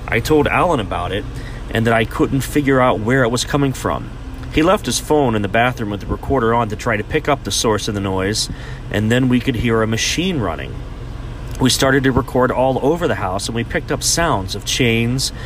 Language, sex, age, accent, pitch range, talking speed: English, male, 40-59, American, 110-130 Hz, 235 wpm